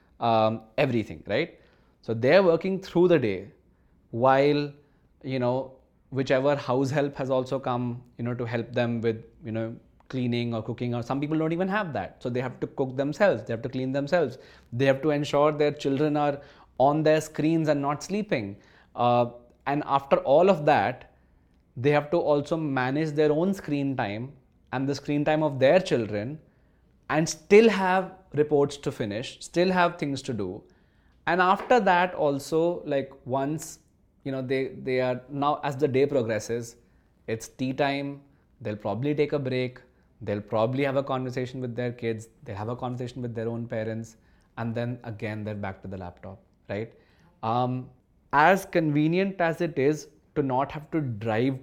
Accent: Indian